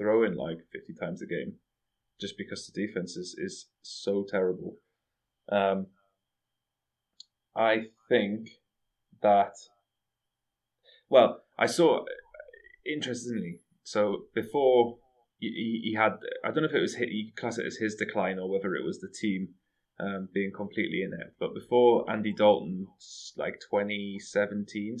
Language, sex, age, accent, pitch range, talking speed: English, male, 20-39, British, 95-115 Hz, 140 wpm